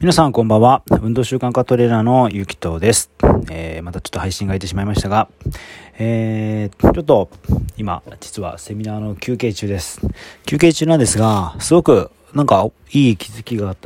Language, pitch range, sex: Japanese, 90-120 Hz, male